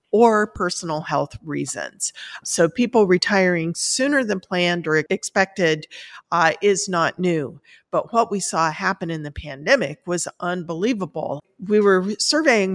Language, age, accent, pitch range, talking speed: English, 50-69, American, 160-200 Hz, 135 wpm